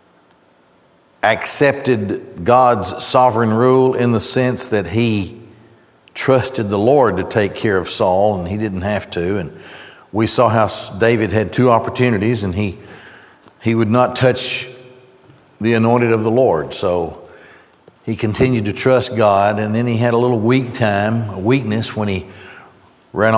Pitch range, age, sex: 105-125 Hz, 60-79, male